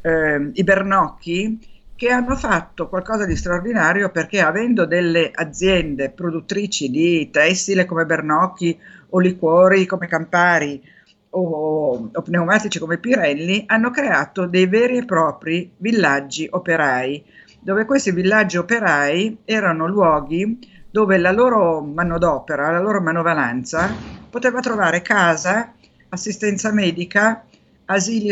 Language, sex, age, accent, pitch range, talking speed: Italian, female, 50-69, native, 165-210 Hz, 115 wpm